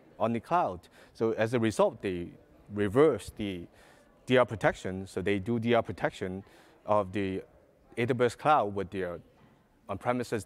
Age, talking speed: 30-49, 140 wpm